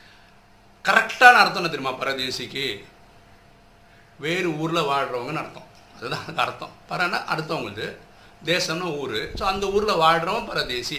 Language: Tamil